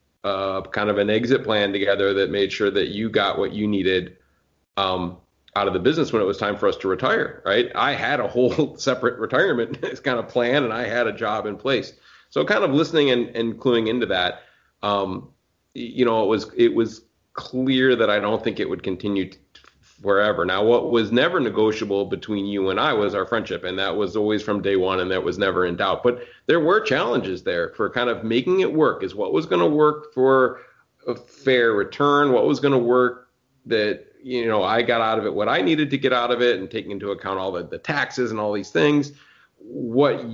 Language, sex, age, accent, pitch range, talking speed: English, male, 30-49, American, 105-135 Hz, 225 wpm